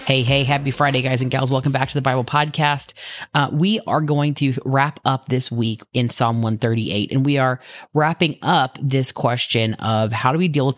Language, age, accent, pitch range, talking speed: English, 30-49, American, 120-140 Hz, 210 wpm